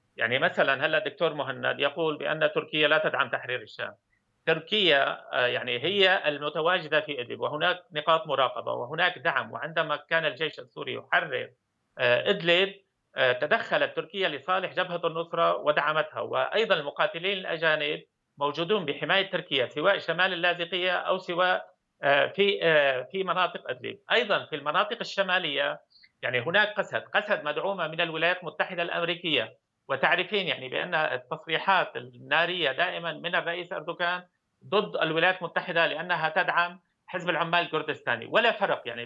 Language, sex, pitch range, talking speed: Arabic, male, 155-185 Hz, 130 wpm